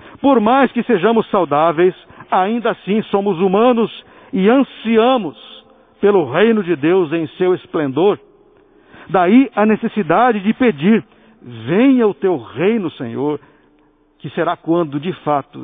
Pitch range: 145-230 Hz